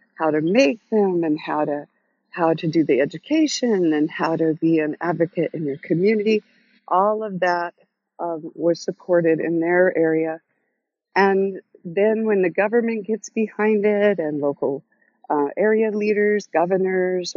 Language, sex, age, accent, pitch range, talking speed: English, female, 50-69, American, 165-205 Hz, 150 wpm